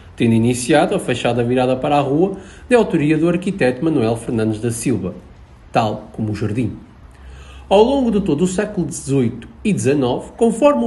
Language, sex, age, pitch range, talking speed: Portuguese, male, 50-69, 115-195 Hz, 165 wpm